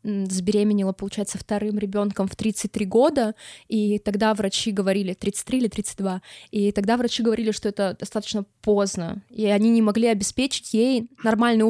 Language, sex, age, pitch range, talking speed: Russian, female, 20-39, 195-240 Hz, 150 wpm